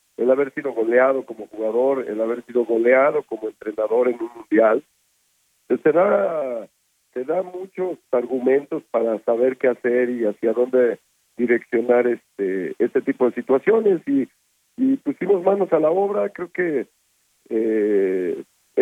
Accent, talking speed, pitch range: Mexican, 140 wpm, 115-165 Hz